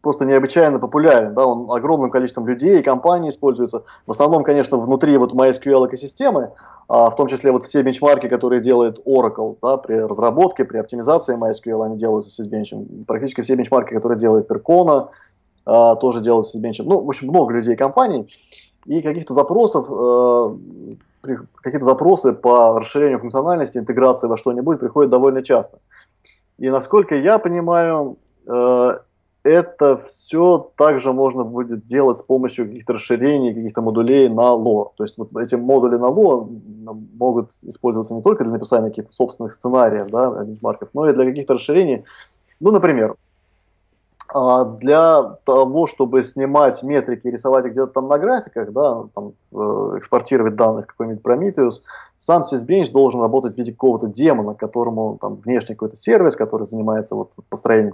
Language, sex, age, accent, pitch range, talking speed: Russian, male, 20-39, native, 115-135 Hz, 150 wpm